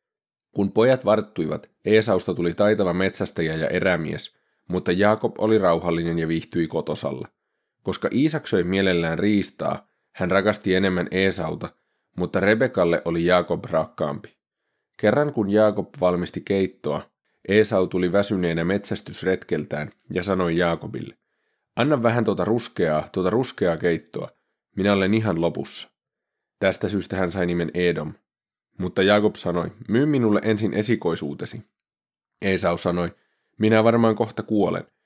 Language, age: Finnish, 30-49